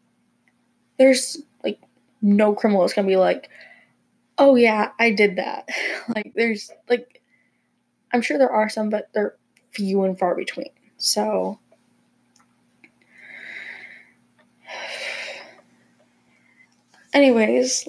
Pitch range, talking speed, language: 215-255 Hz, 100 wpm, English